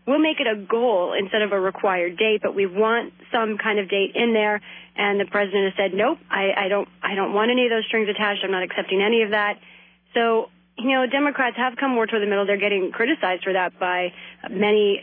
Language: English